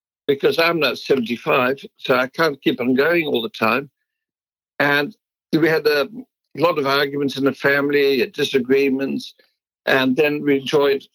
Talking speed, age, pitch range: 150 wpm, 60-79, 135-170 Hz